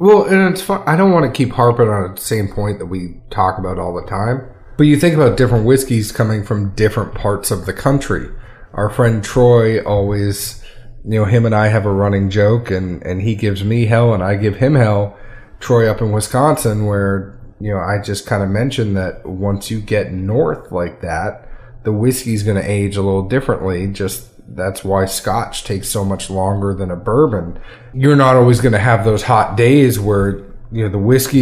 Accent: American